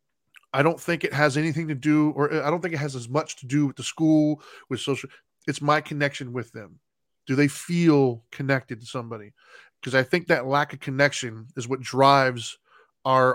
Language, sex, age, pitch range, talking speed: English, male, 20-39, 130-155 Hz, 200 wpm